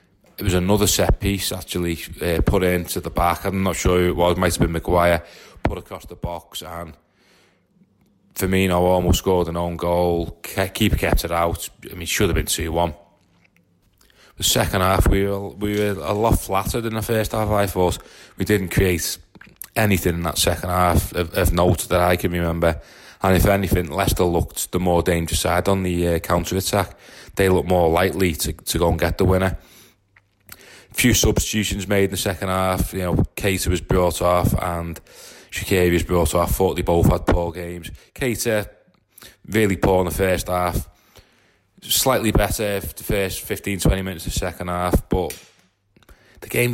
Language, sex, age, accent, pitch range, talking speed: English, male, 30-49, British, 85-100 Hz, 190 wpm